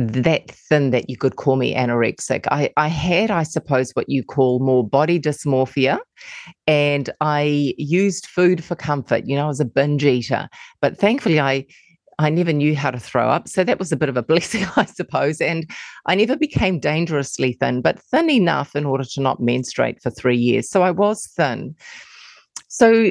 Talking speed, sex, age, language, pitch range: 190 wpm, female, 30-49, English, 130-175 Hz